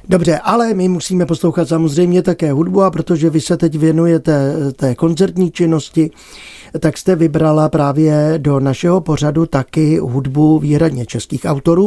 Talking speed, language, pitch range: 145 wpm, Czech, 150-185 Hz